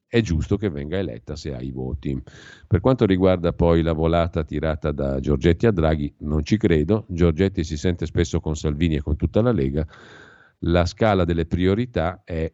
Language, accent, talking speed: Italian, native, 185 wpm